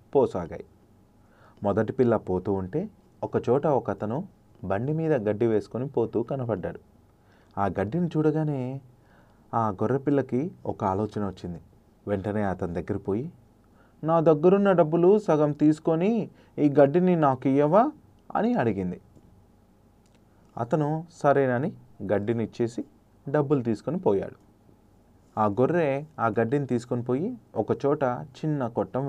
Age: 30-49